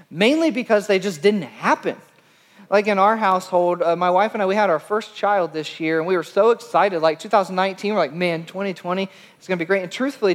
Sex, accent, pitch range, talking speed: male, American, 165-215 Hz, 230 wpm